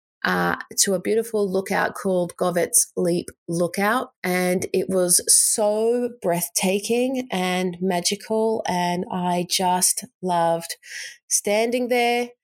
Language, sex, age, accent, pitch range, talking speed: English, female, 30-49, Australian, 175-220 Hz, 105 wpm